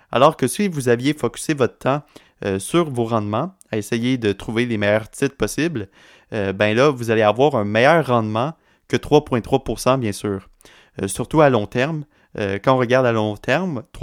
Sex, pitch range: male, 110-135 Hz